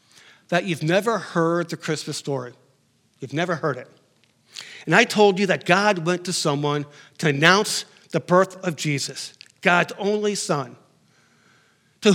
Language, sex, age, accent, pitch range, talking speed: English, male, 50-69, American, 155-205 Hz, 150 wpm